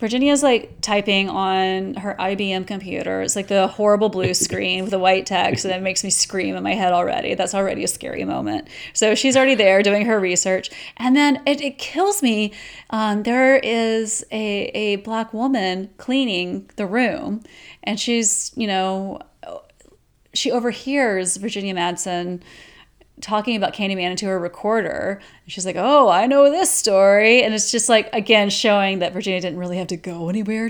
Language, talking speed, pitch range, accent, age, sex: English, 175 wpm, 185-245 Hz, American, 30-49, female